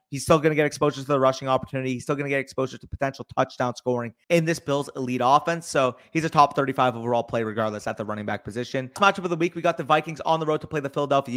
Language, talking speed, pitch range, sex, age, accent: English, 280 wpm, 130-155 Hz, male, 30-49, American